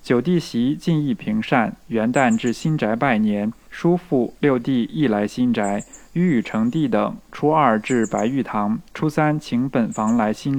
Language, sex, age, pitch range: Chinese, male, 20-39, 120-170 Hz